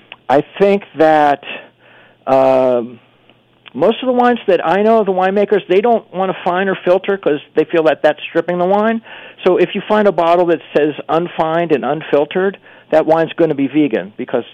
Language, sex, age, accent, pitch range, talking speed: English, male, 50-69, American, 135-170 Hz, 190 wpm